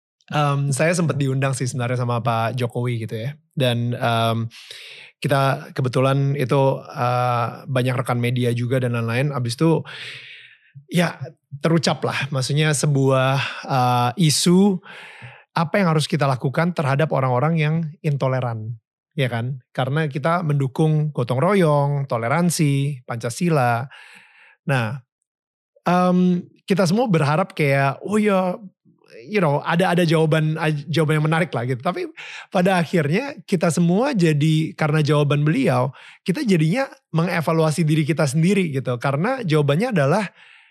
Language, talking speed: Indonesian, 125 wpm